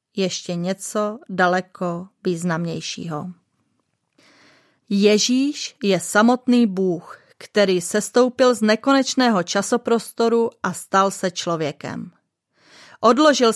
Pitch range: 195-245 Hz